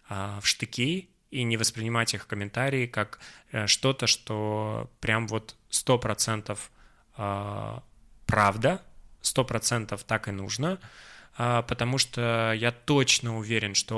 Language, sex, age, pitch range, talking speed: Russian, male, 20-39, 105-125 Hz, 110 wpm